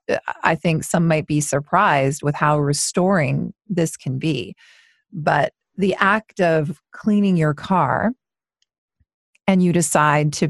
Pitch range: 145-180 Hz